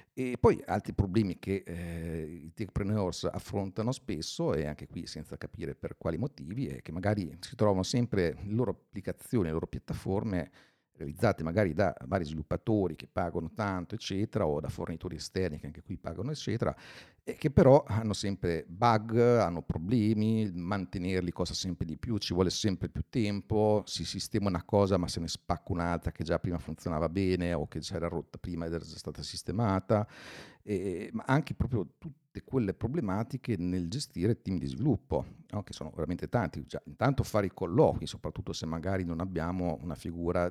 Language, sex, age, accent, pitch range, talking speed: Italian, male, 50-69, native, 85-105 Hz, 175 wpm